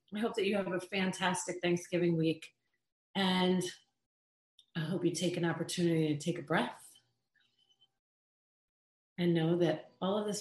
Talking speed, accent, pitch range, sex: 150 wpm, American, 150-175 Hz, female